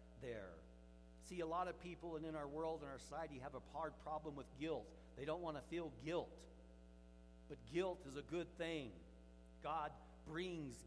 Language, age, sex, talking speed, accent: English, 50-69, male, 180 wpm, American